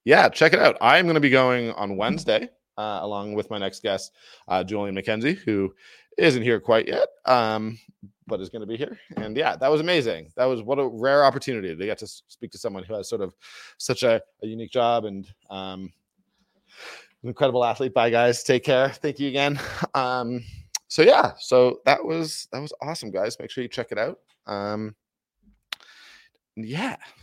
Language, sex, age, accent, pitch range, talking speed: English, male, 20-39, American, 95-130 Hz, 195 wpm